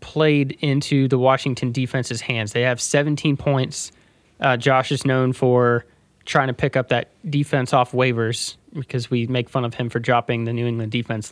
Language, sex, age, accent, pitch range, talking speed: English, male, 20-39, American, 120-145 Hz, 185 wpm